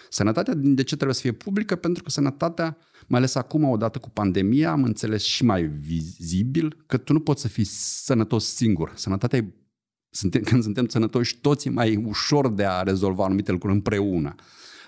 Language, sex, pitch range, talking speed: Romanian, male, 95-130 Hz, 180 wpm